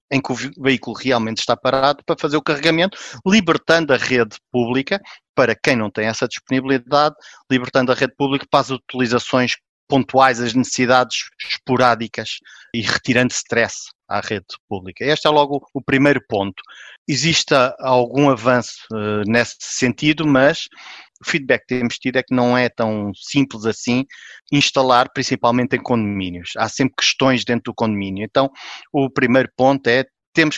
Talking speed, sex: 155 wpm, male